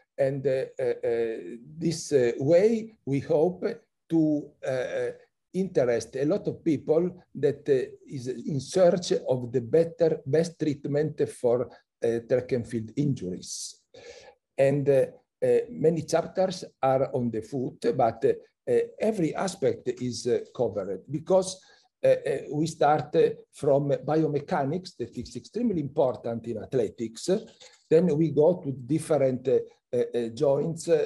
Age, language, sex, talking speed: 60-79, English, male, 130 wpm